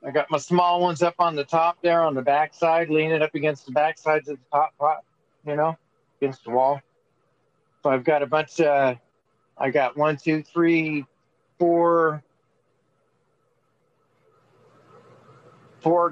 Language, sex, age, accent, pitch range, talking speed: English, male, 50-69, American, 135-165 Hz, 160 wpm